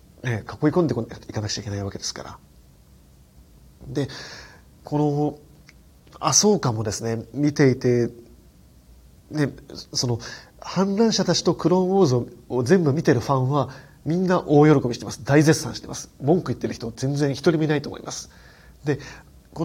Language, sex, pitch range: Japanese, male, 115-160 Hz